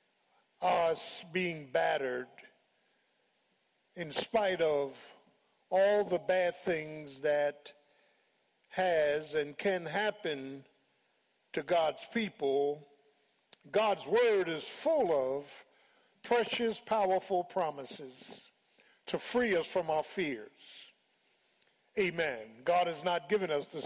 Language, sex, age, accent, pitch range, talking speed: English, male, 50-69, American, 150-210 Hz, 100 wpm